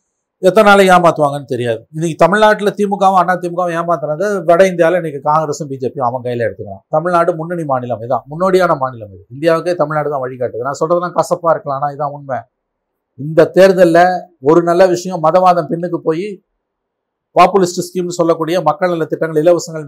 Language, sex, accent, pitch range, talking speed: Tamil, male, native, 140-175 Hz, 155 wpm